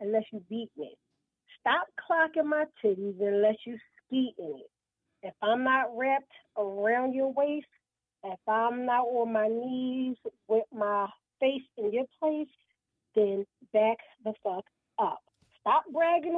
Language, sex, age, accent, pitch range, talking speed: English, female, 40-59, American, 220-290 Hz, 145 wpm